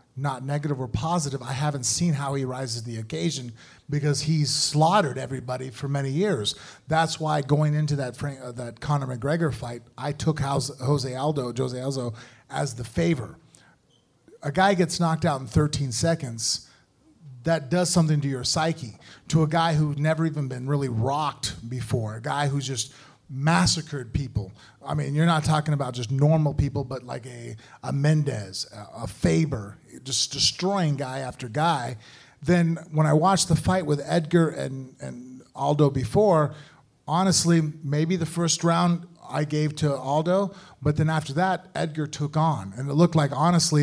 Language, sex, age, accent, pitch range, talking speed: English, male, 30-49, American, 130-155 Hz, 175 wpm